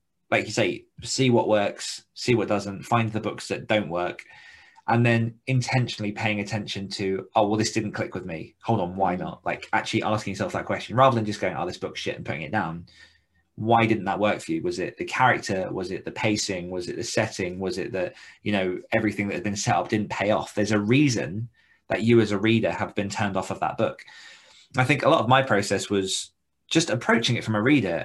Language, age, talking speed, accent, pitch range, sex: English, 20-39, 240 wpm, British, 100-115 Hz, male